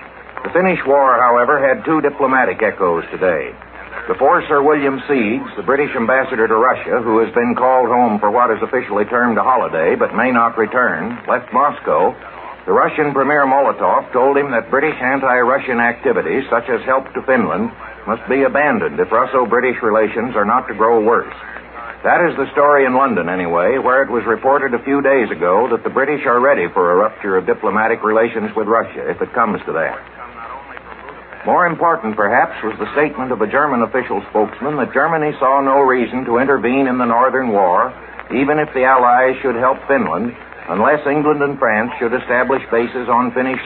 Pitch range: 125-150 Hz